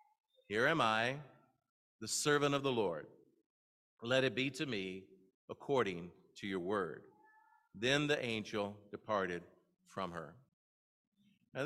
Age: 50-69